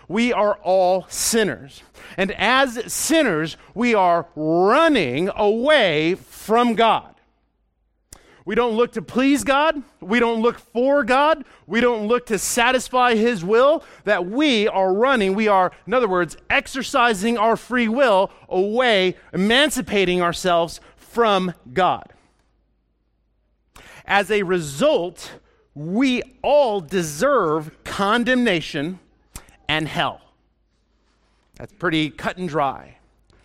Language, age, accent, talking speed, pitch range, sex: English, 40-59, American, 115 wpm, 180-250 Hz, male